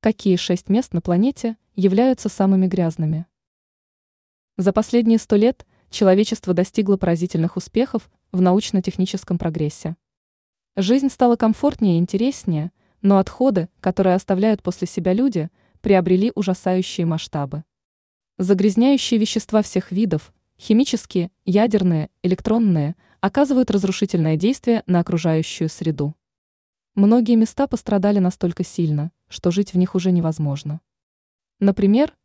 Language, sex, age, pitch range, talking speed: Russian, female, 20-39, 175-220 Hz, 110 wpm